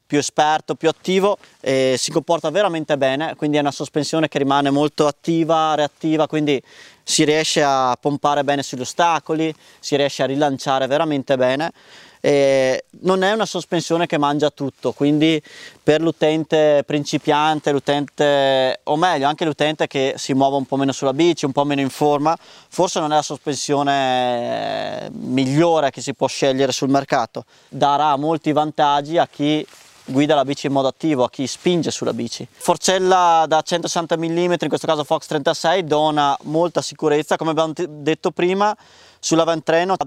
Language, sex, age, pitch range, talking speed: Italian, male, 20-39, 140-165 Hz, 160 wpm